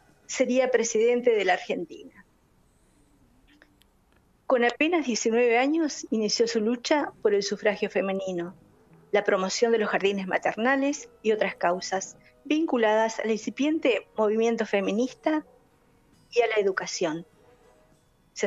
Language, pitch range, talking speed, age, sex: Spanish, 210-260 Hz, 115 wpm, 40-59, female